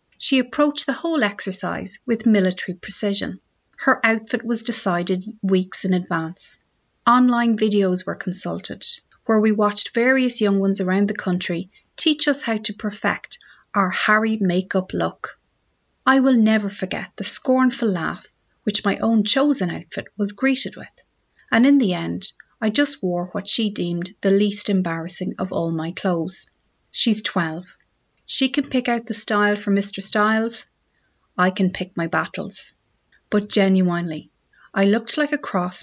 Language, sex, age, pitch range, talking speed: English, female, 30-49, 185-230 Hz, 155 wpm